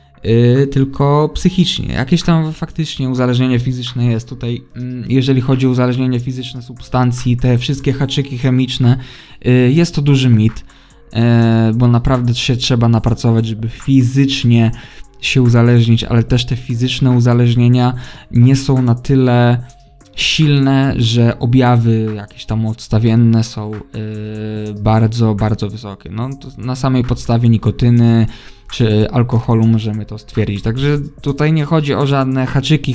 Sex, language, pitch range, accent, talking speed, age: male, Polish, 115-135 Hz, native, 125 wpm, 20-39